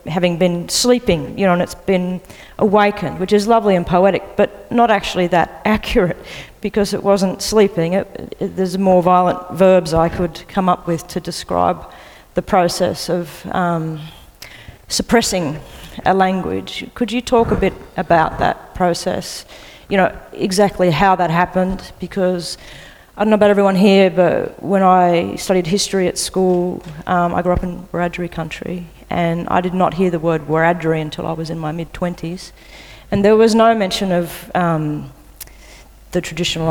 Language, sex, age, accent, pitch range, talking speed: English, female, 40-59, Australian, 165-195 Hz, 160 wpm